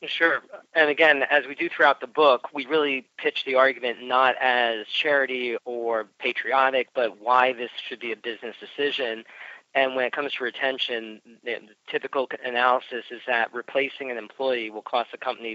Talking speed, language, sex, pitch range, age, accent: 175 wpm, English, male, 110-130 Hz, 40-59, American